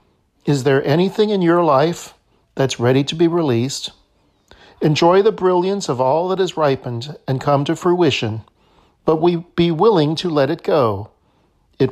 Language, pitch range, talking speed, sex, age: English, 120-180 Hz, 155 wpm, male, 50-69